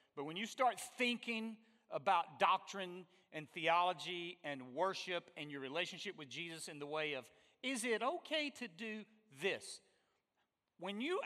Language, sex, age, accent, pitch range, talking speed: English, male, 40-59, American, 170-225 Hz, 150 wpm